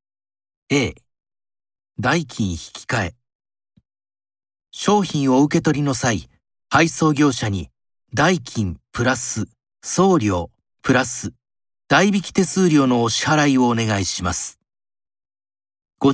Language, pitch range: Japanese, 105-160 Hz